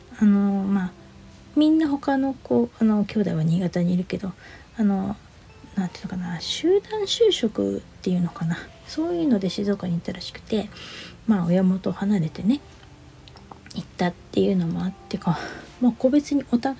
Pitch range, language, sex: 180-255 Hz, Japanese, female